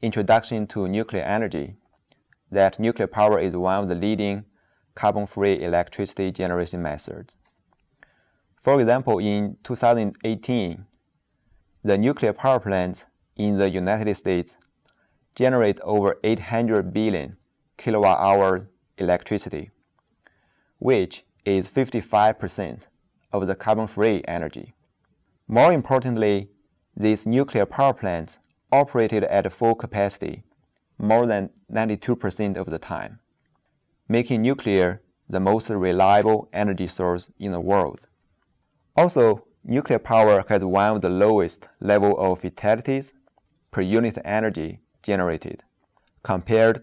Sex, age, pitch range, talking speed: male, 30-49, 95-110 Hz, 105 wpm